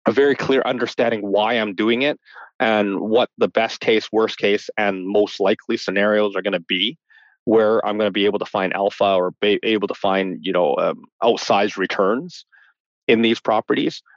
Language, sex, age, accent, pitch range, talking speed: English, male, 30-49, American, 100-120 Hz, 190 wpm